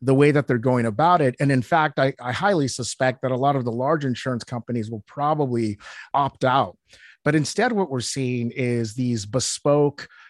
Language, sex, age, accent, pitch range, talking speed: English, male, 30-49, American, 120-150 Hz, 200 wpm